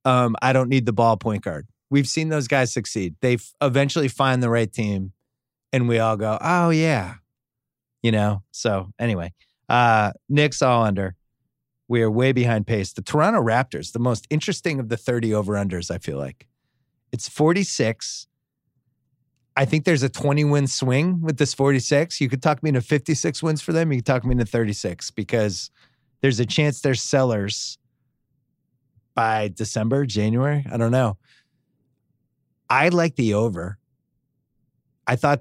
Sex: male